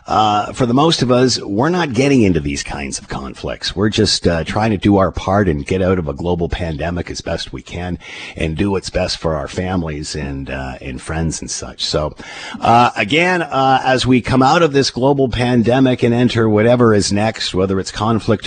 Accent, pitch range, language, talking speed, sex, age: American, 80-110 Hz, English, 215 wpm, male, 50-69